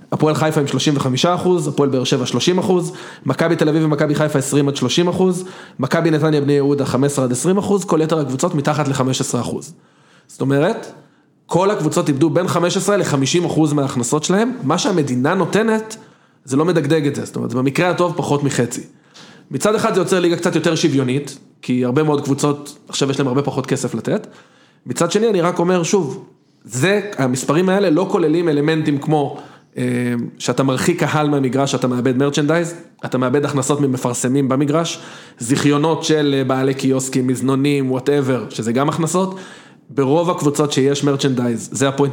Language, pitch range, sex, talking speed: Hebrew, 135-175 Hz, male, 145 wpm